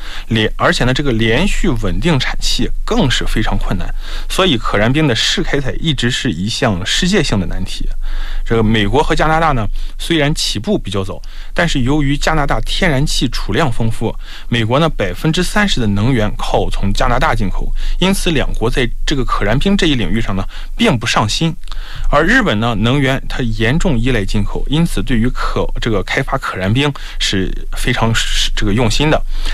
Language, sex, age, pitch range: Korean, male, 20-39, 110-150 Hz